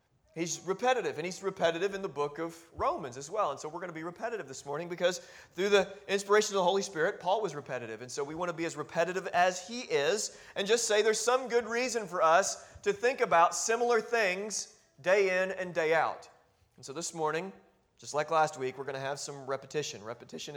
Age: 30-49